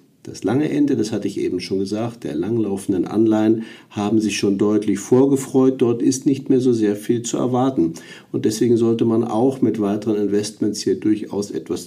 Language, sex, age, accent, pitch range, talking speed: German, male, 50-69, German, 100-125 Hz, 185 wpm